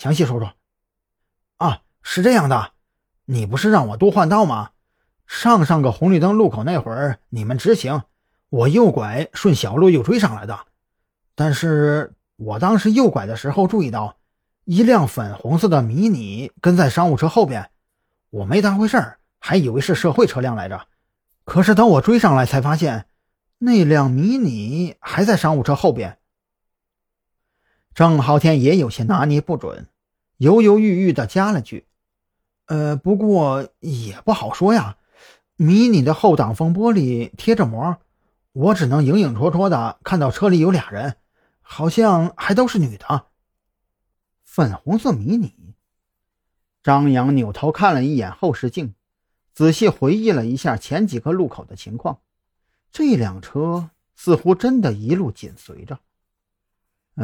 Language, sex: Chinese, male